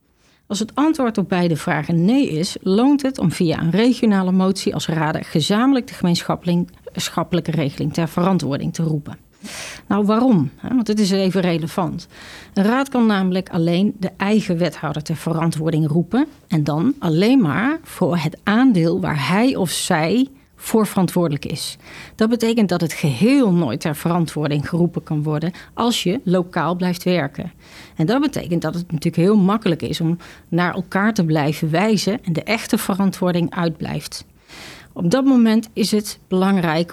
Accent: Dutch